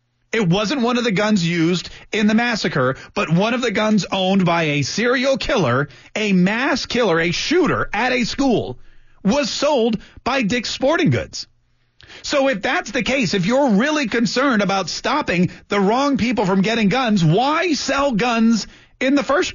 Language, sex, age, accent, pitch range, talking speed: English, male, 40-59, American, 160-245 Hz, 175 wpm